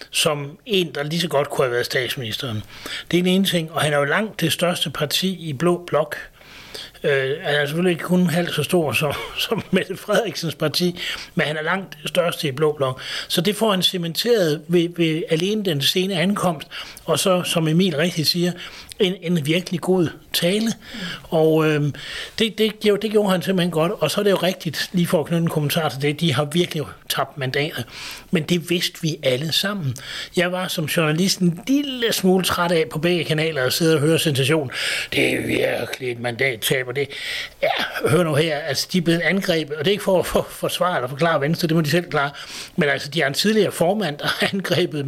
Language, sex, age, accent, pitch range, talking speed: Danish, male, 60-79, native, 145-180 Hz, 220 wpm